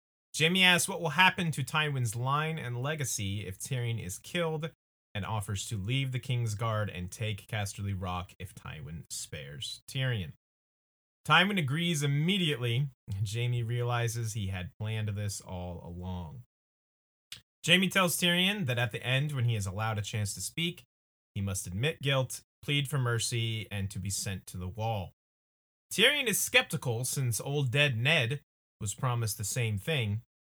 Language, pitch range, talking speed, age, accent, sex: English, 100-145 Hz, 160 wpm, 30-49, American, male